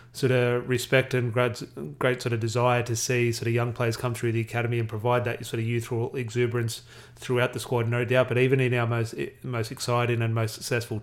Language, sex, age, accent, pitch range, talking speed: English, male, 30-49, Australian, 115-125 Hz, 220 wpm